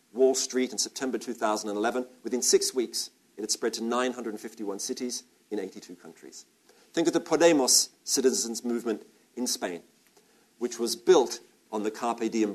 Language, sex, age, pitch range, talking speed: English, male, 50-69, 105-145 Hz, 155 wpm